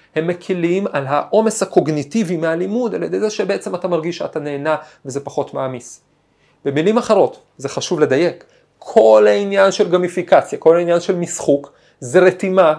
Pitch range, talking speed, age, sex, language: 140-200 Hz, 150 wpm, 40-59, male, Hebrew